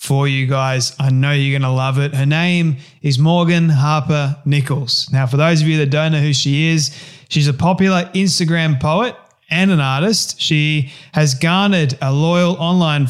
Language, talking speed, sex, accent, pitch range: English, 190 wpm, male, Australian, 140-160 Hz